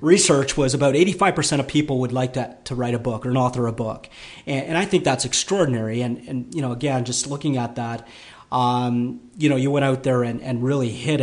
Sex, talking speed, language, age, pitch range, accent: male, 240 wpm, English, 40-59, 125-160 Hz, American